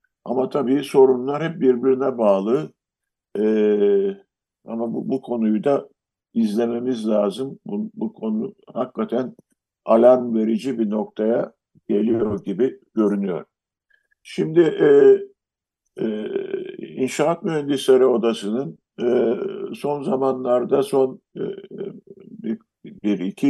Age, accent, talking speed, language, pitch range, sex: 50-69, native, 100 wpm, Turkish, 115-160 Hz, male